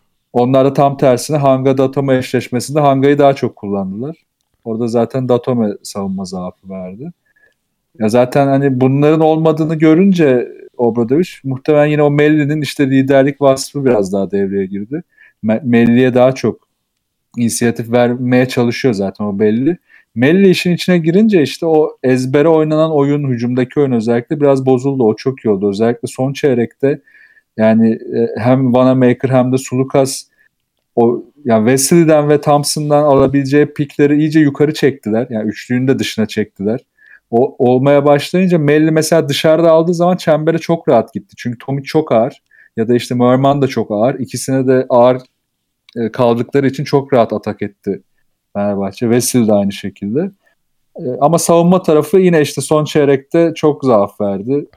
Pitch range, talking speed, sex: 120-150 Hz, 145 wpm, male